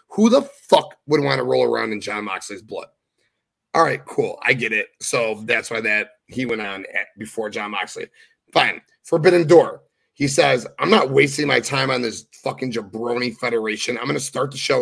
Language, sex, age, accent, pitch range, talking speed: English, male, 30-49, American, 125-180 Hz, 200 wpm